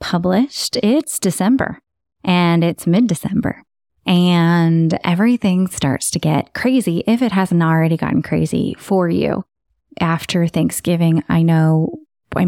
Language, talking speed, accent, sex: English, 120 wpm, American, female